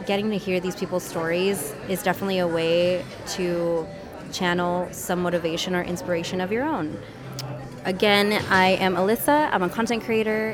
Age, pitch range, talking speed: 20-39, 170-195 Hz, 155 wpm